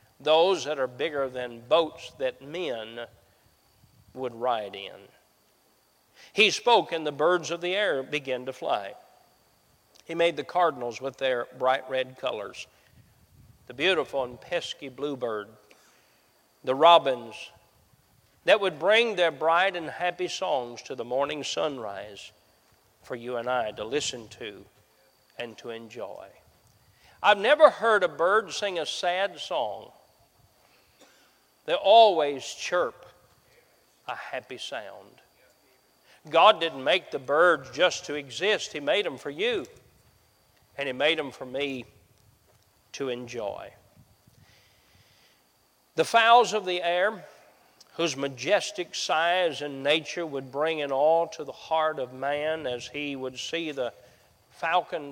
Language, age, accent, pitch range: English, 40-59, American, 120-170 Hz